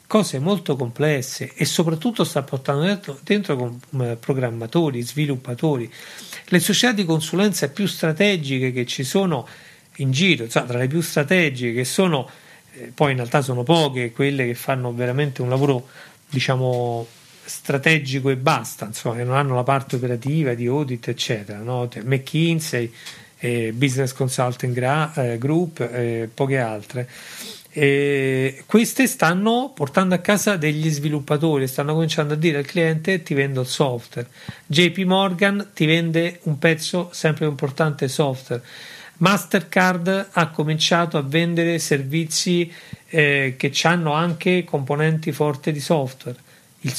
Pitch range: 130-170 Hz